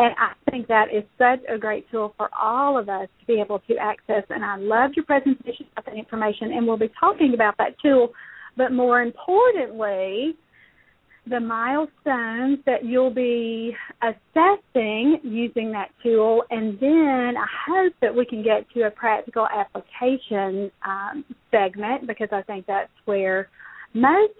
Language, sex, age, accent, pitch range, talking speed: English, female, 40-59, American, 210-270 Hz, 160 wpm